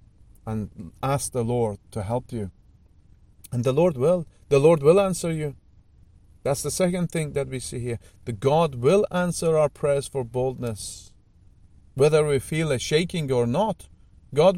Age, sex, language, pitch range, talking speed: 40-59, male, English, 105-175 Hz, 165 wpm